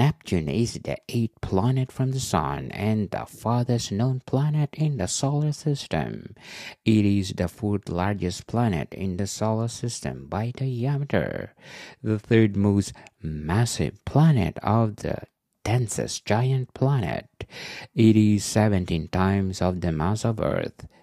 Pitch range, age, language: 95-120 Hz, 60-79, English